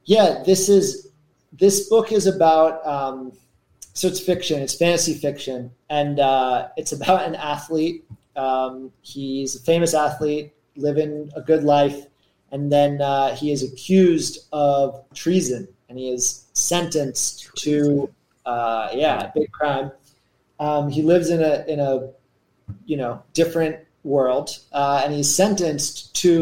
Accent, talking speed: American, 145 wpm